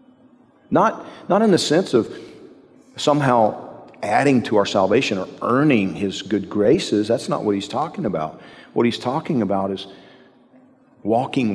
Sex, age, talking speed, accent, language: male, 40-59, 145 wpm, American, English